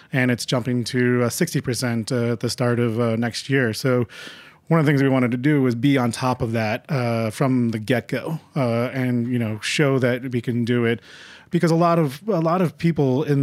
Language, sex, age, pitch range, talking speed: English, male, 30-49, 120-140 Hz, 240 wpm